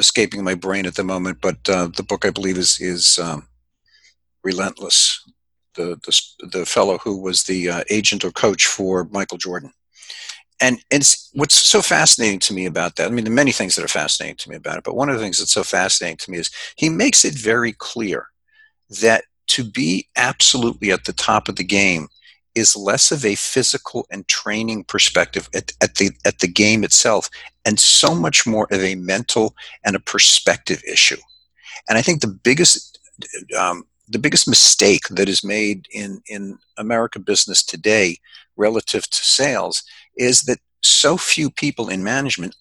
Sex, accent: male, American